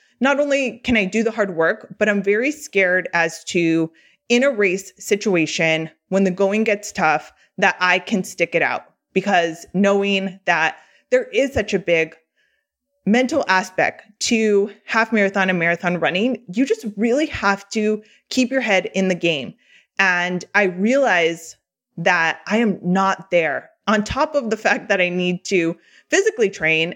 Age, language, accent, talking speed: 20-39, English, American, 165 wpm